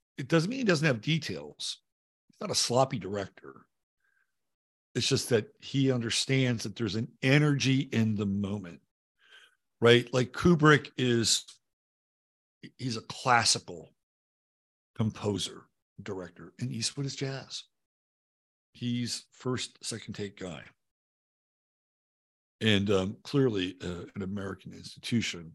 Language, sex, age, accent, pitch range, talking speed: English, male, 60-79, American, 100-140 Hz, 115 wpm